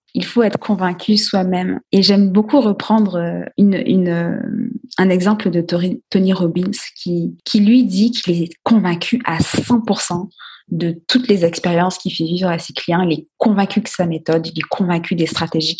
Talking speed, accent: 175 wpm, French